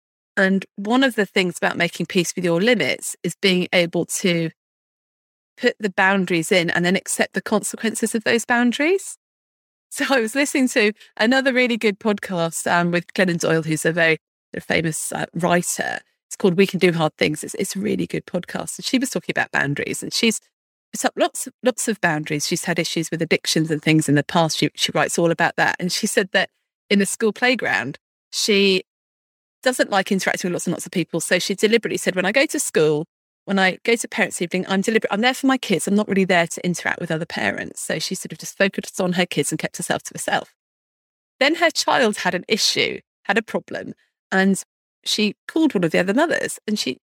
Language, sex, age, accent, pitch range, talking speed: English, female, 30-49, British, 175-250 Hz, 220 wpm